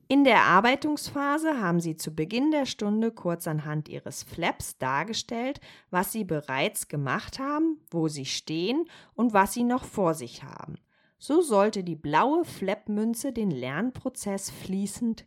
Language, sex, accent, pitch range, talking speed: German, female, German, 165-245 Hz, 145 wpm